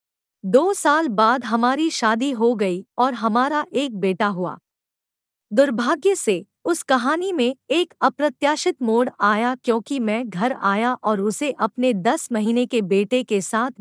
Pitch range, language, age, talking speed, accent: 215-295 Hz, Hindi, 50-69, 150 wpm, native